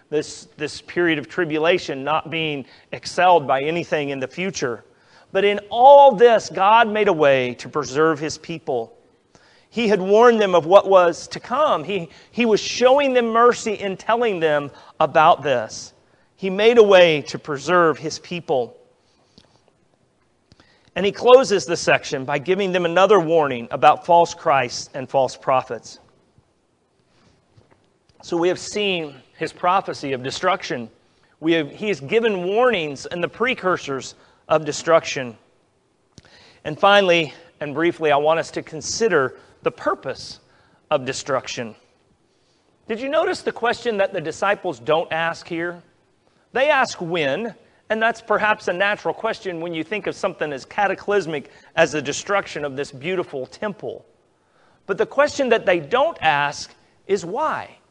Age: 40-59